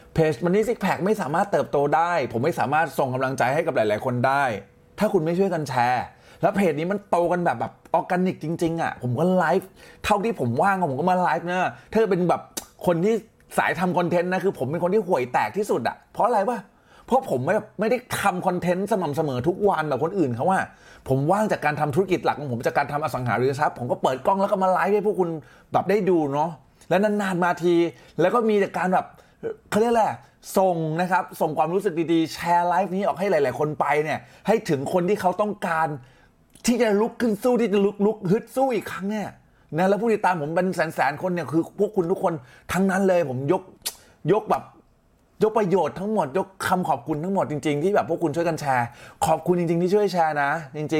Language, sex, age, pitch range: Thai, male, 20-39, 155-200 Hz